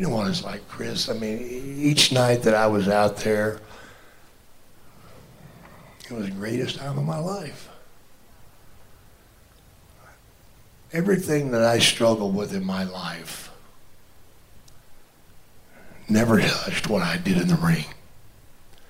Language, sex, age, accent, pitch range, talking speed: English, male, 60-79, American, 105-135 Hz, 125 wpm